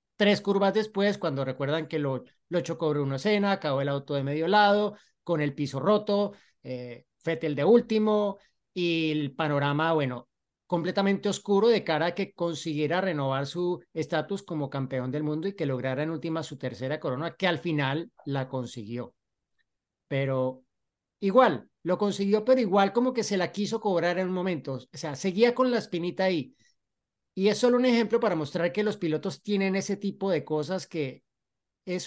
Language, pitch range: Spanish, 145-195 Hz